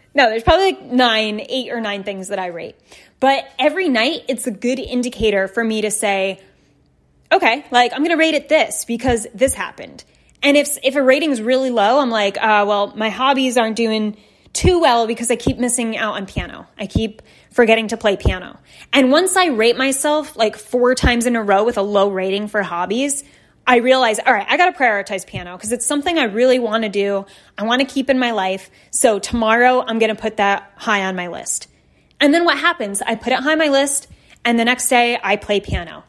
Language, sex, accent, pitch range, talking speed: English, female, American, 205-260 Hz, 225 wpm